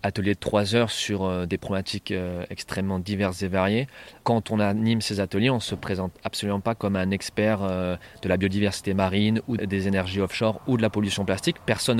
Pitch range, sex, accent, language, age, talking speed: 100-120 Hz, male, French, French, 30-49, 195 wpm